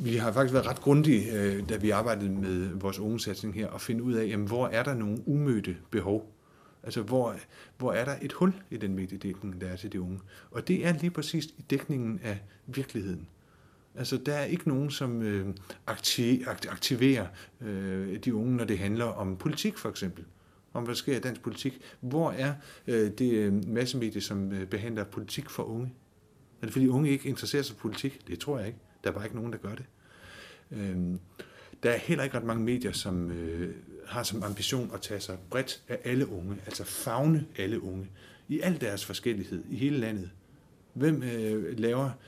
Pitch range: 100-135 Hz